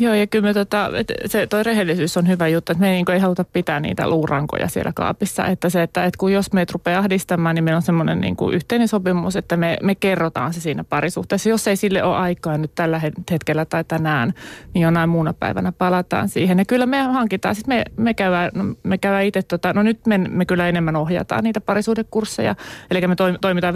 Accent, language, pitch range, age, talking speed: native, Finnish, 165-195 Hz, 30-49, 190 wpm